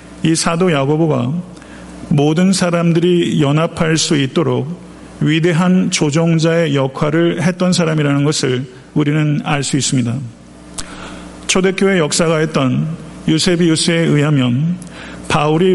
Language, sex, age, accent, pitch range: Korean, male, 50-69, native, 140-170 Hz